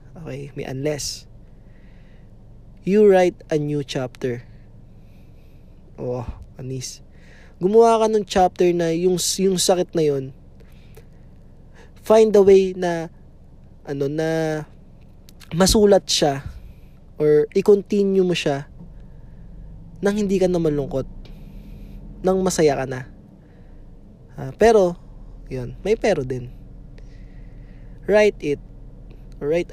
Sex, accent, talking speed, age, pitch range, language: male, native, 105 wpm, 20-39, 130-180 Hz, Filipino